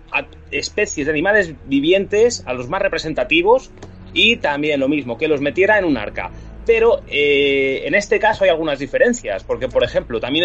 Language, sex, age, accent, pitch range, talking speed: Spanish, male, 30-49, Spanish, 145-235 Hz, 180 wpm